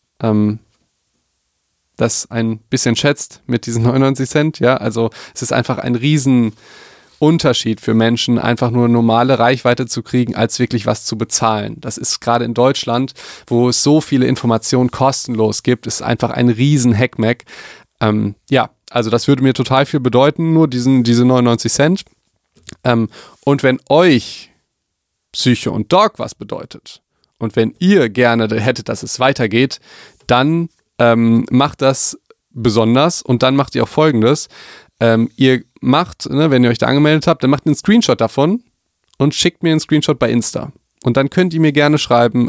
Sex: male